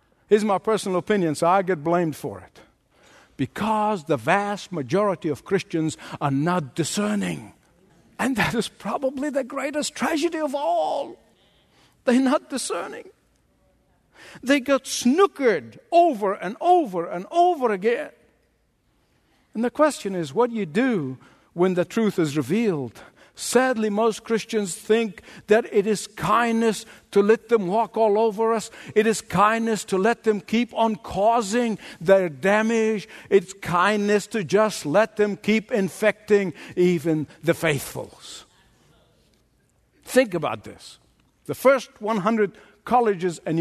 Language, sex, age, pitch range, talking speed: English, male, 60-79, 175-230 Hz, 135 wpm